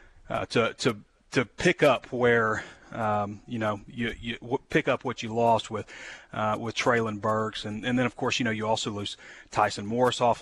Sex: male